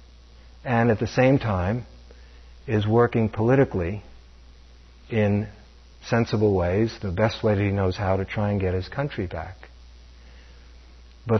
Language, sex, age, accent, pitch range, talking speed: English, male, 50-69, American, 85-125 Hz, 135 wpm